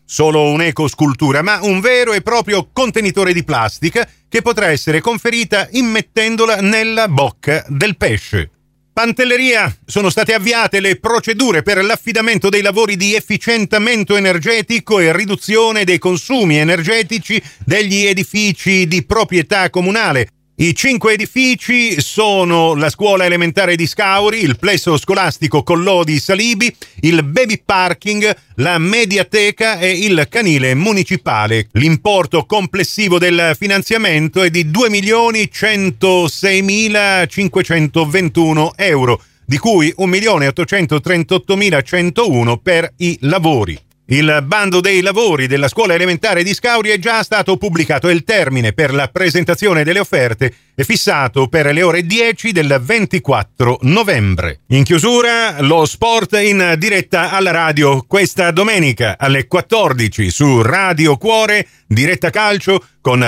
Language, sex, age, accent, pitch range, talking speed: Italian, male, 40-59, native, 155-210 Hz, 120 wpm